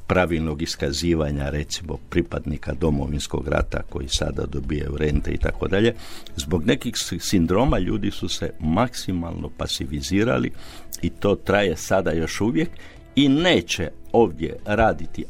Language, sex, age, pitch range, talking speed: Croatian, male, 60-79, 80-100 Hz, 120 wpm